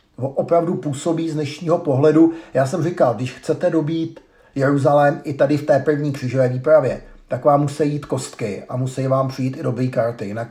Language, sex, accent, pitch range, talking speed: Czech, male, native, 130-155 Hz, 185 wpm